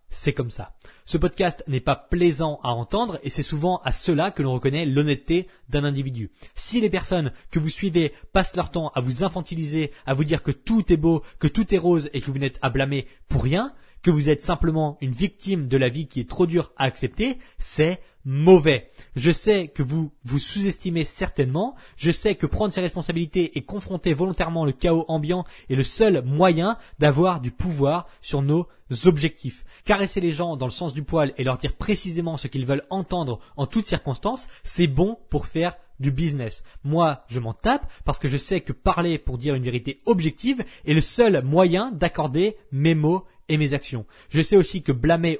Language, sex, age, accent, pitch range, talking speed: French, male, 20-39, French, 140-180 Hz, 200 wpm